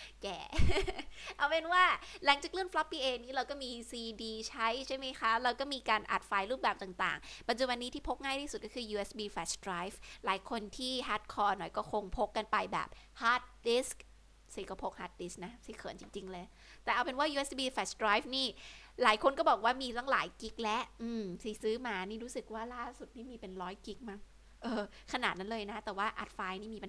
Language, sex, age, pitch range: Thai, female, 20-39, 205-255 Hz